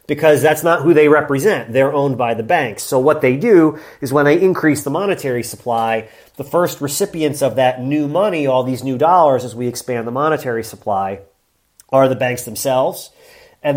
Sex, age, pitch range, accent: male, 30-49, 125-150 Hz, American